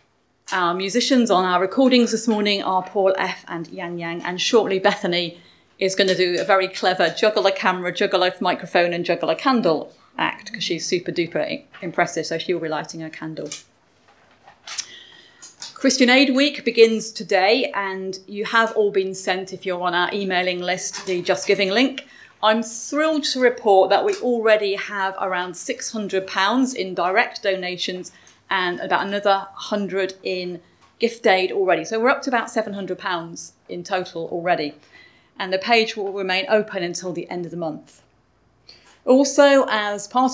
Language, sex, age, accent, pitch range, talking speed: English, female, 30-49, British, 185-230 Hz, 165 wpm